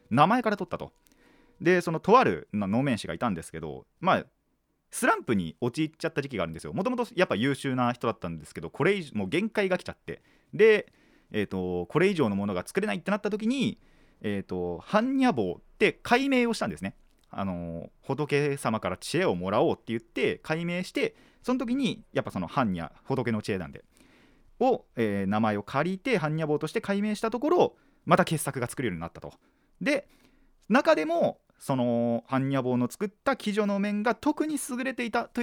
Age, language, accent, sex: 30-49, Japanese, native, male